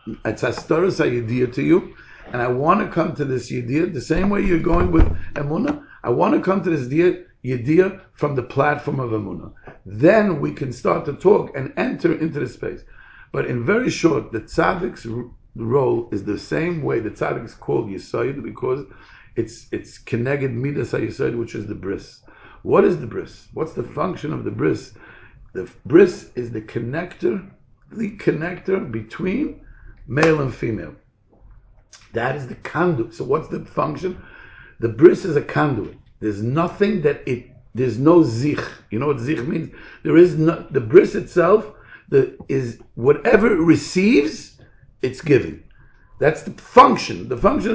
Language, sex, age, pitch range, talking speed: English, male, 60-79, 120-180 Hz, 165 wpm